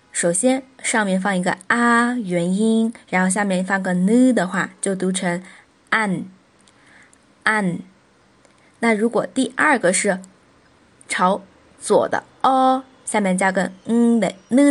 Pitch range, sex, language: 195-265 Hz, female, Chinese